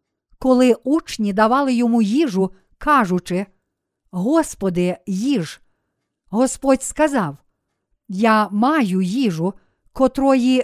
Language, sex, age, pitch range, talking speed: Ukrainian, female, 50-69, 210-275 Hz, 80 wpm